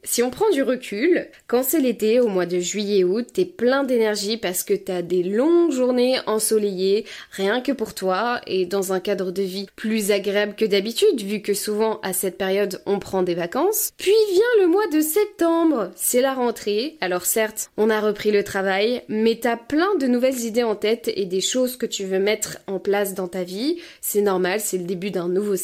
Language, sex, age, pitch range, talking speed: French, female, 20-39, 200-270 Hz, 210 wpm